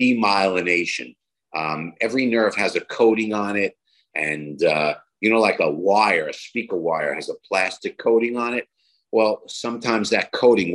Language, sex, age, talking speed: English, male, 50-69, 160 wpm